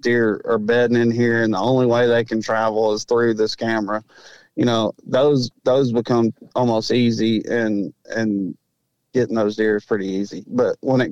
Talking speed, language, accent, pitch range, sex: 185 wpm, English, American, 115-130 Hz, male